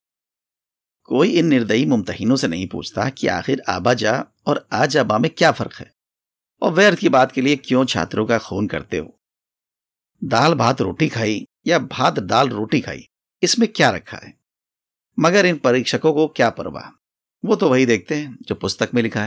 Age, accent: 50-69, native